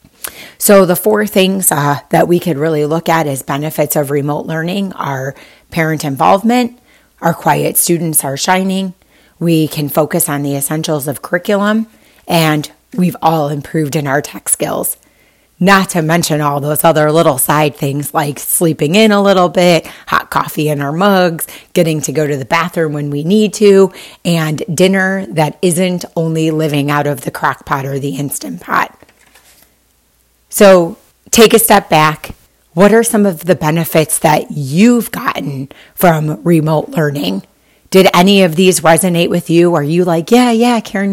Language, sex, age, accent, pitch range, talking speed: English, female, 30-49, American, 150-185 Hz, 170 wpm